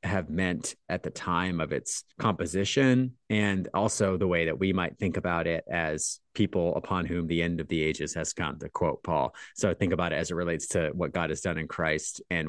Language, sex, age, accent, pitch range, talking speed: English, male, 30-49, American, 90-110 Hz, 225 wpm